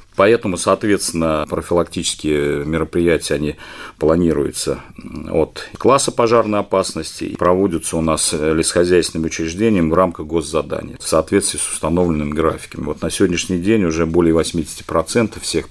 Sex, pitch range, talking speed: male, 80-95 Hz, 120 wpm